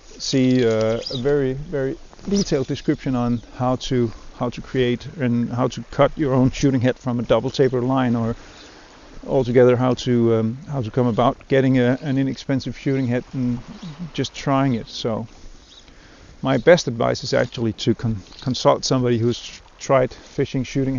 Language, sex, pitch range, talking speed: English, male, 115-135 Hz, 170 wpm